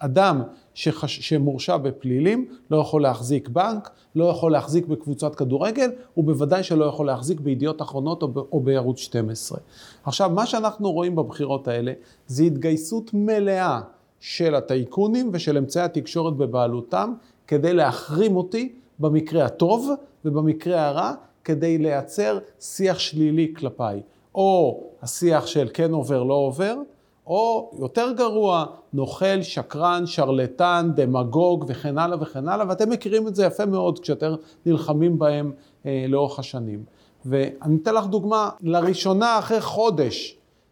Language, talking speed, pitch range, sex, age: Hebrew, 130 wpm, 145-195 Hz, male, 40-59